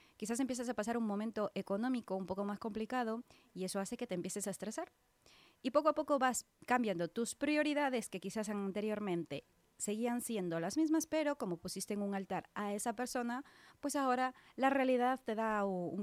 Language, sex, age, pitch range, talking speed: Spanish, female, 20-39, 195-255 Hz, 185 wpm